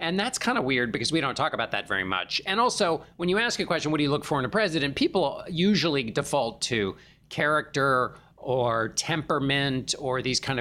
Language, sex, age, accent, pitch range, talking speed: English, male, 40-59, American, 140-170 Hz, 215 wpm